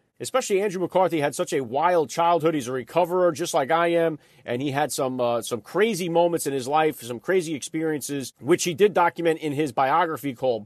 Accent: American